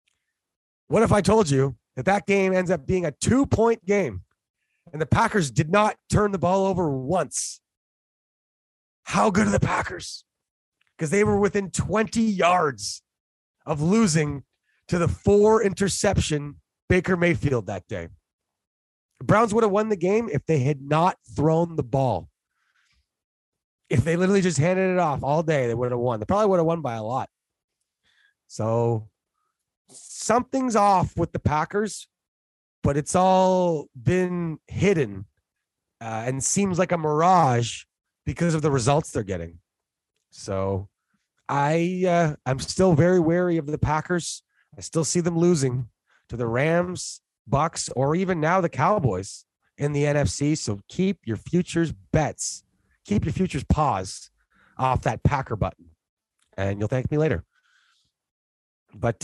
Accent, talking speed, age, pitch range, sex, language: American, 150 wpm, 30-49, 115-185 Hz, male, English